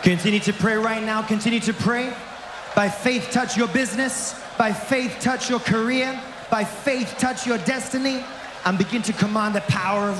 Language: English